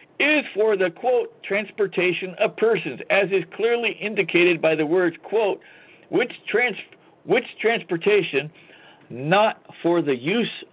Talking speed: 125 wpm